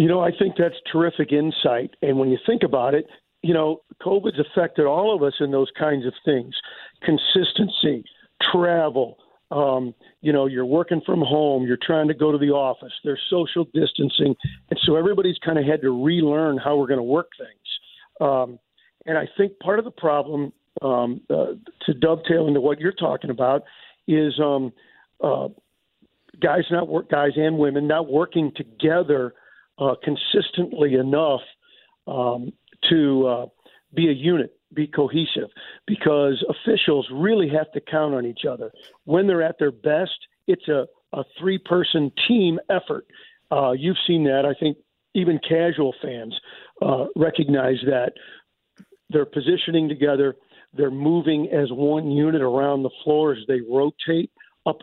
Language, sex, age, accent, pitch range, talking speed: English, male, 50-69, American, 140-170 Hz, 160 wpm